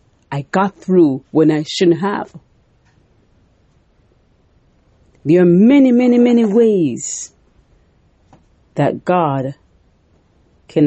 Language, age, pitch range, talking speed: English, 40-59, 140-205 Hz, 90 wpm